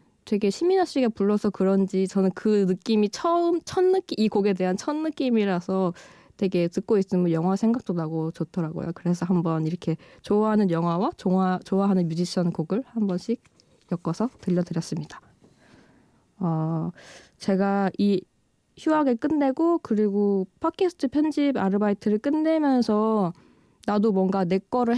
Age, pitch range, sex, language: 20-39, 185-250 Hz, female, Korean